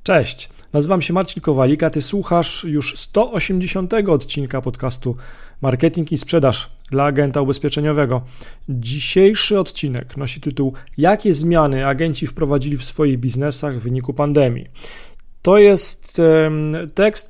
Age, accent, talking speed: 40-59, native, 120 wpm